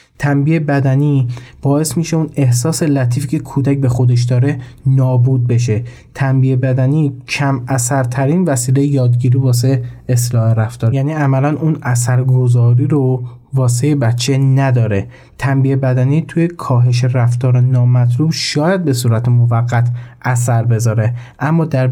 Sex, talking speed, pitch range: male, 125 wpm, 120-140 Hz